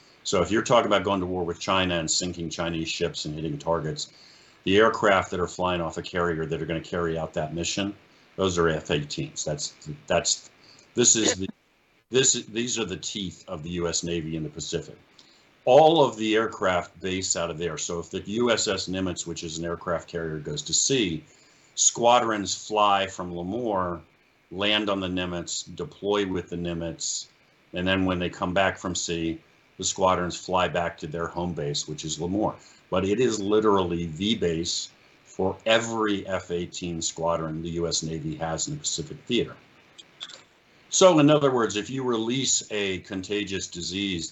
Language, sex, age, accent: English, male, 50-69, American